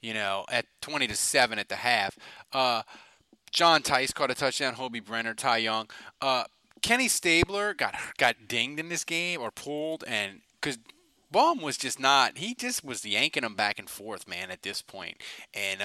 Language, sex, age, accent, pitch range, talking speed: English, male, 30-49, American, 130-210 Hz, 180 wpm